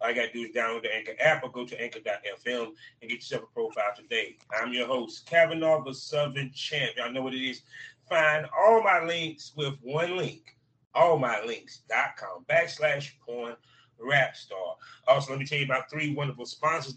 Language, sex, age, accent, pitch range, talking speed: English, male, 30-49, American, 130-160 Hz, 185 wpm